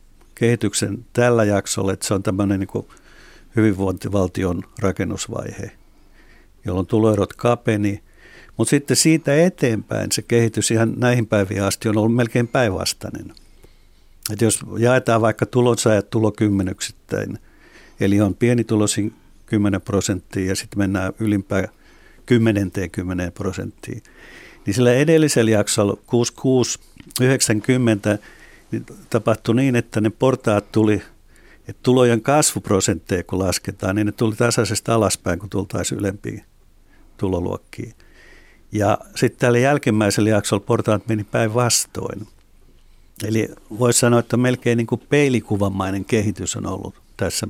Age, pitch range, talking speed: 60-79, 100-120 Hz, 115 wpm